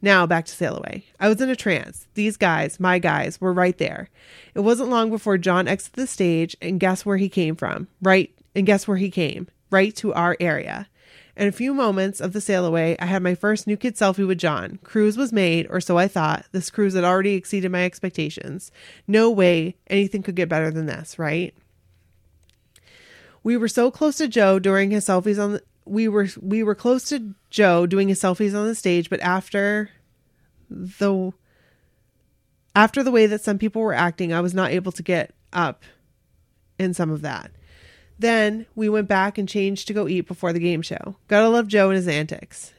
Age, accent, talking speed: 30-49, American, 205 wpm